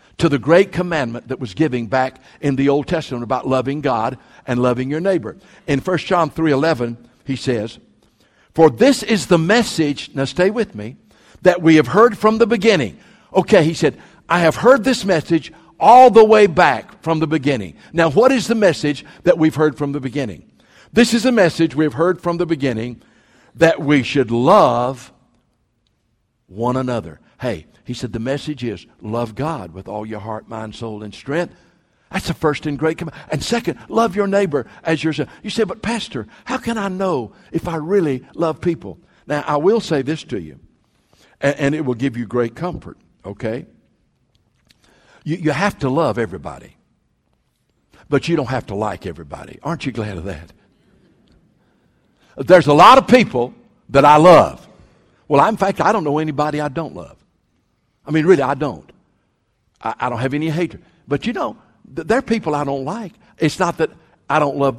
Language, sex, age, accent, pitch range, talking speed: English, male, 60-79, American, 130-180 Hz, 190 wpm